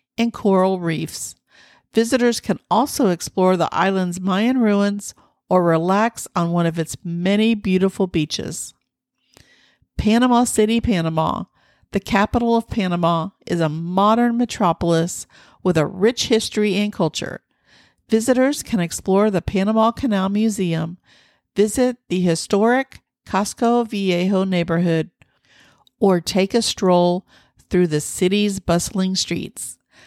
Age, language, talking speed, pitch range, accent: 50-69, English, 120 wpm, 175-215 Hz, American